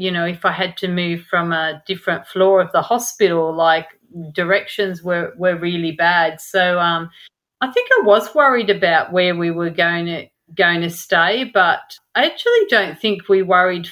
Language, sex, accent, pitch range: English, female, Australian, 175-195 Hz